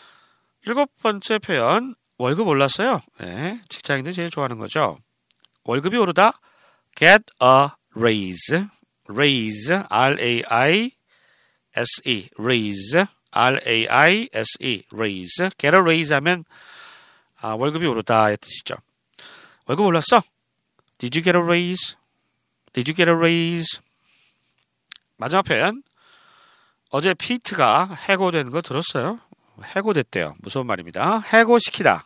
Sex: male